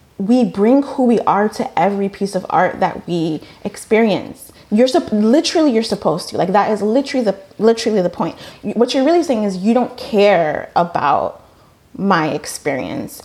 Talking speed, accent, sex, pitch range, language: 170 wpm, American, female, 170-210 Hz, English